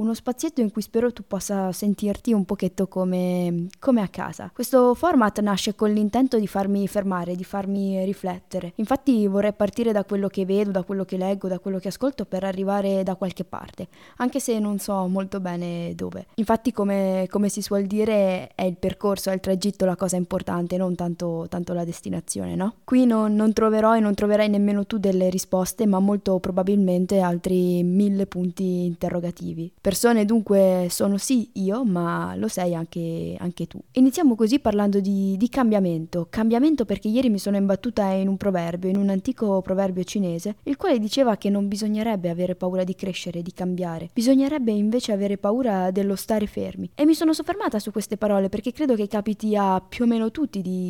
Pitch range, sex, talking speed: 185-220 Hz, female, 185 wpm